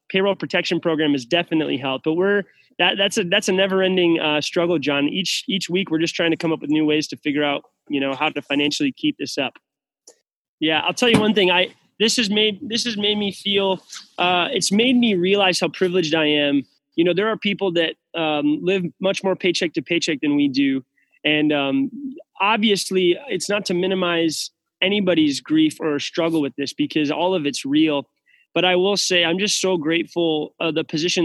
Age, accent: 20-39, American